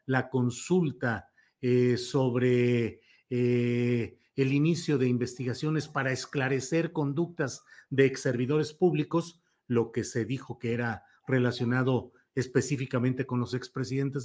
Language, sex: Spanish, male